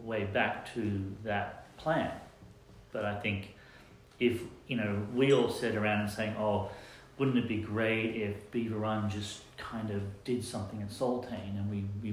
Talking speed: 170 wpm